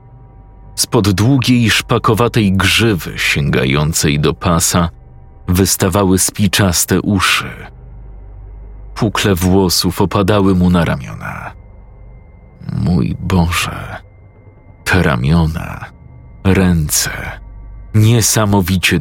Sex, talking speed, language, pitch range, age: male, 70 wpm, Polish, 90-105 Hz, 50-69